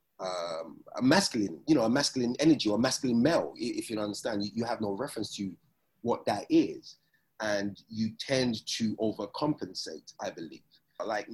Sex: male